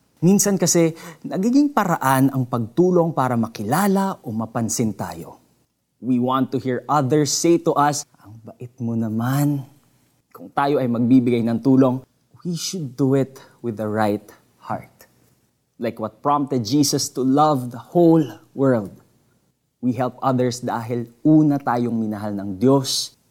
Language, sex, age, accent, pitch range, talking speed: Filipino, male, 20-39, native, 110-140 Hz, 140 wpm